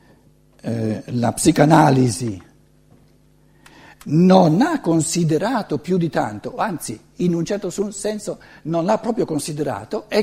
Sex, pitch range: male, 170-235 Hz